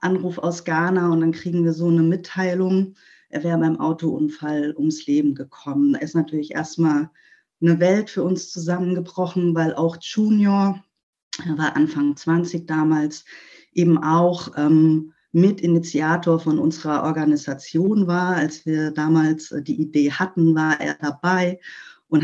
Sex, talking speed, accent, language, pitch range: female, 140 wpm, German, German, 155-180 Hz